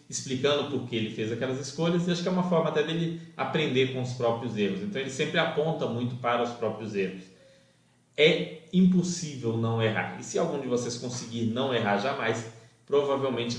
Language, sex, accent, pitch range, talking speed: Portuguese, male, Brazilian, 110-145 Hz, 190 wpm